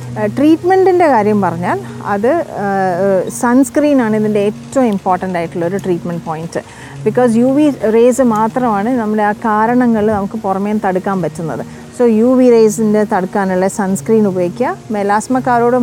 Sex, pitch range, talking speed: female, 190-240 Hz, 115 wpm